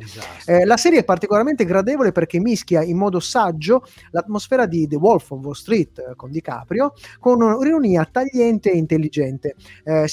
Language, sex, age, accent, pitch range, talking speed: Italian, male, 30-49, native, 160-220 Hz, 160 wpm